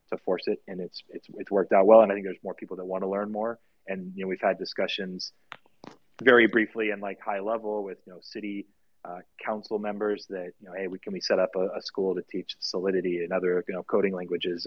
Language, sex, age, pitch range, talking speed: English, male, 30-49, 95-105 Hz, 250 wpm